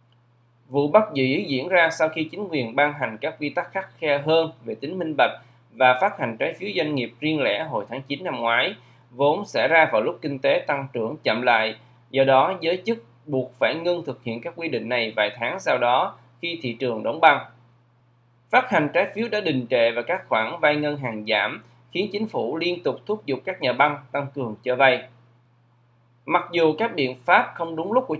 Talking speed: 225 wpm